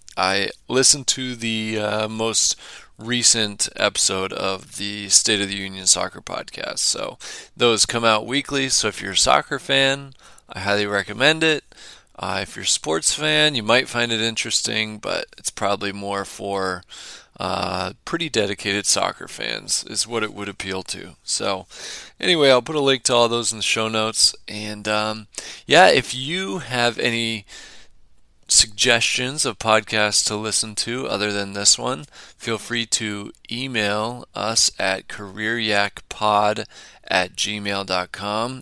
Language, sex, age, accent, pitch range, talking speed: English, male, 20-39, American, 100-120 Hz, 150 wpm